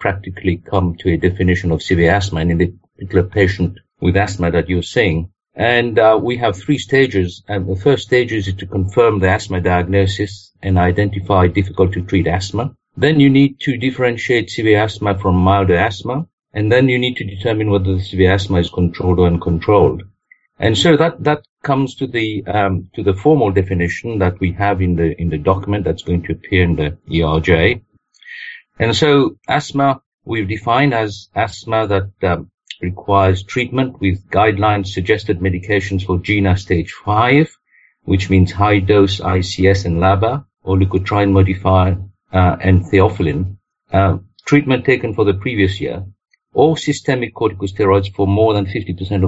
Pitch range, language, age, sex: 90-110 Hz, English, 50-69, male